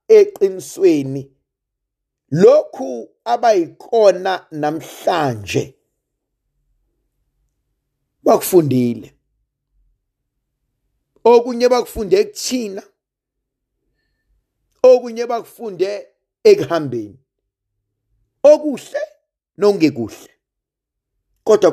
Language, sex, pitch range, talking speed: English, male, 125-195 Hz, 40 wpm